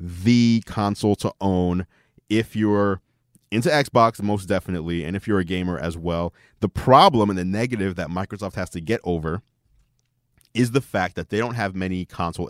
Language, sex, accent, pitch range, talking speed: English, male, American, 85-105 Hz, 180 wpm